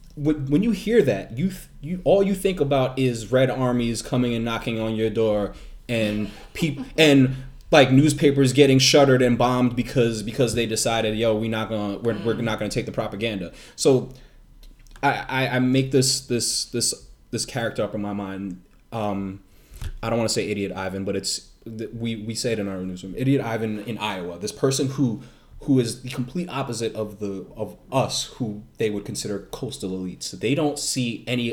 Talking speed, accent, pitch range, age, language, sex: 190 wpm, American, 110-140 Hz, 20-39, English, male